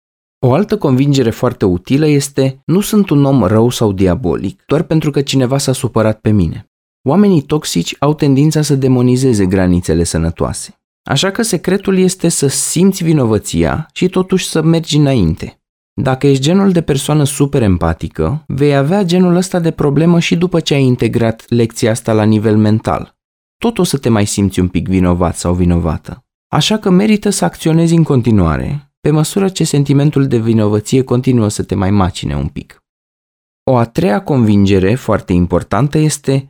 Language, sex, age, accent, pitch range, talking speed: Romanian, male, 20-39, native, 105-155 Hz, 170 wpm